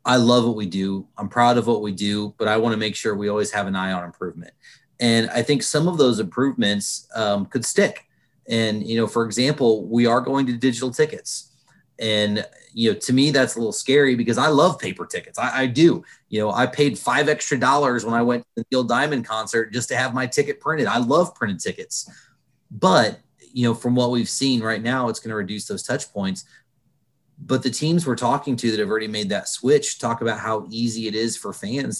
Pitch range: 110-130 Hz